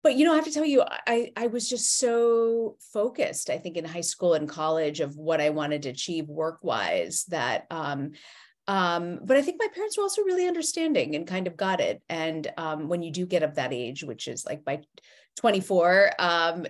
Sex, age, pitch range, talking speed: female, 30-49, 160-190 Hz, 225 wpm